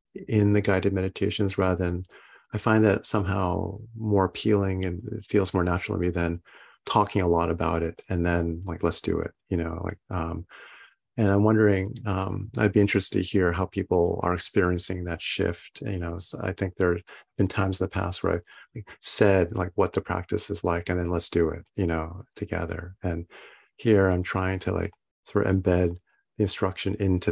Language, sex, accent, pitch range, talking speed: English, male, American, 90-105 Hz, 195 wpm